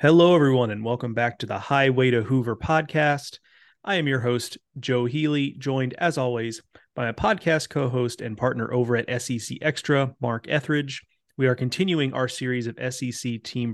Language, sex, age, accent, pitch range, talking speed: English, male, 30-49, American, 115-140 Hz, 175 wpm